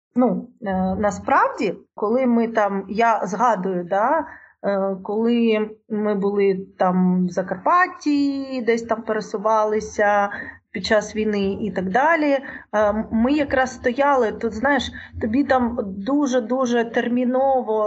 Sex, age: female, 30-49